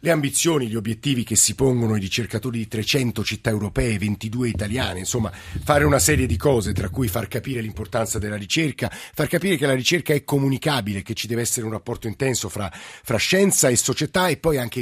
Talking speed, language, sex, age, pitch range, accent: 205 wpm, Italian, male, 50-69, 105-130 Hz, native